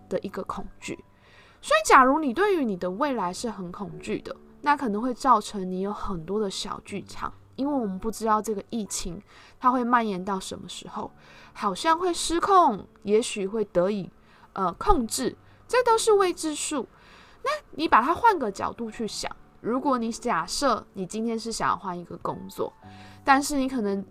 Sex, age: female, 20-39